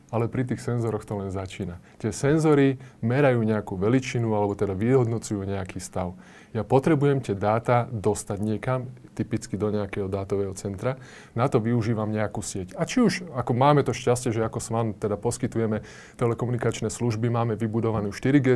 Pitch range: 105-125 Hz